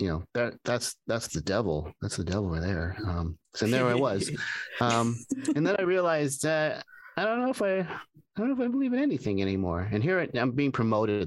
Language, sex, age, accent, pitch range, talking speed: English, male, 30-49, American, 95-125 Hz, 230 wpm